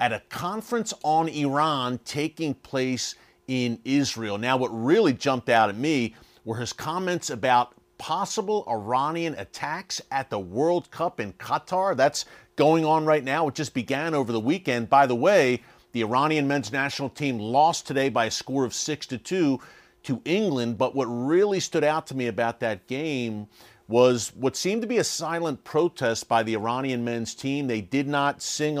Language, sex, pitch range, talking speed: English, male, 120-150 Hz, 180 wpm